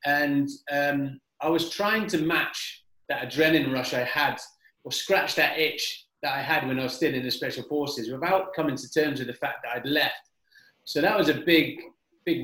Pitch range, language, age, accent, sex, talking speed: 125-170 Hz, English, 30-49, British, male, 205 wpm